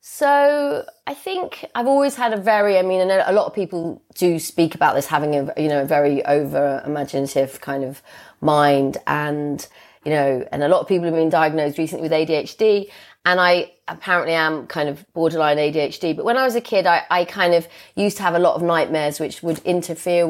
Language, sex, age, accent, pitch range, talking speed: English, female, 30-49, British, 155-185 Hz, 215 wpm